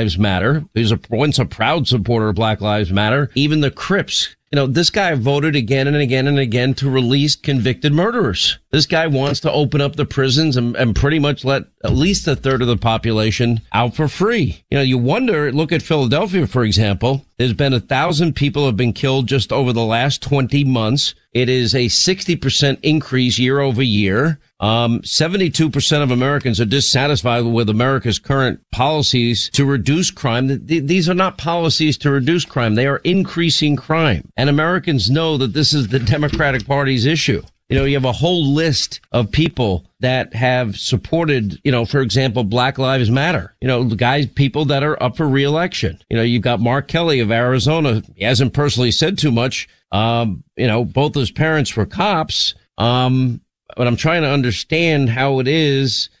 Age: 50-69